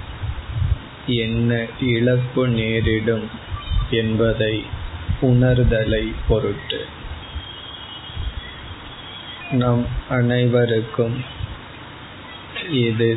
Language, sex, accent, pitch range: Tamil, male, native, 100-120 Hz